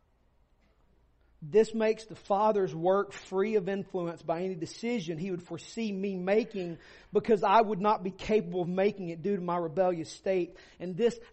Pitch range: 185-245 Hz